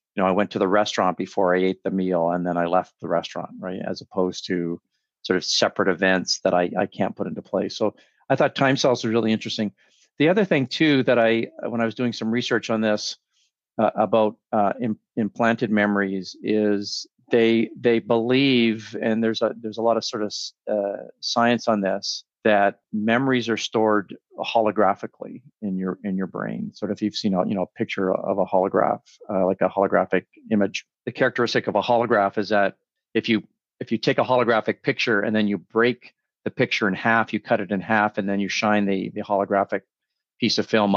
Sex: male